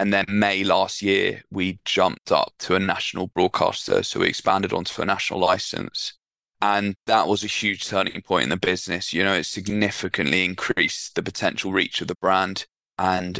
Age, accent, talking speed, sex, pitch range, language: 20-39, British, 185 wpm, male, 95-105 Hz, English